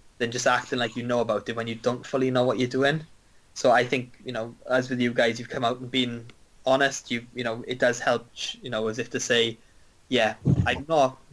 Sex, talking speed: male, 245 wpm